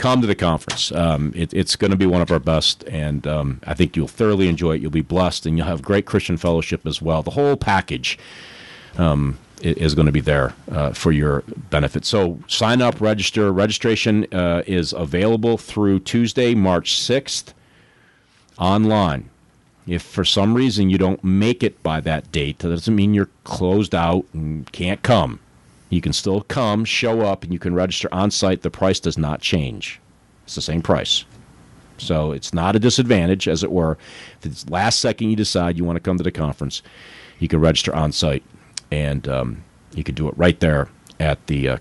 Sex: male